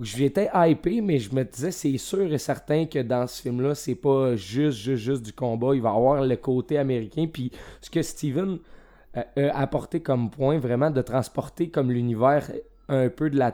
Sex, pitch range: male, 120-145 Hz